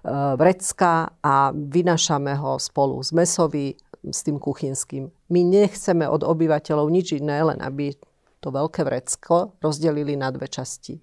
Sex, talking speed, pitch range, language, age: female, 130 wpm, 145-175 Hz, Slovak, 40-59